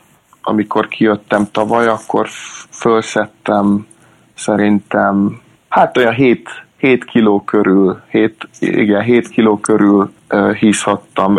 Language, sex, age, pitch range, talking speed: Hungarian, male, 30-49, 100-115 Hz, 90 wpm